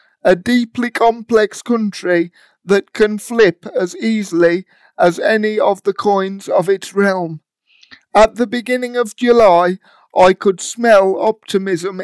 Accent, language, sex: British, English, male